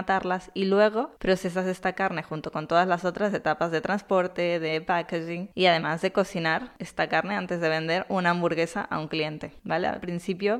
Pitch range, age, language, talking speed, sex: 165-200 Hz, 20-39, Spanish, 180 wpm, female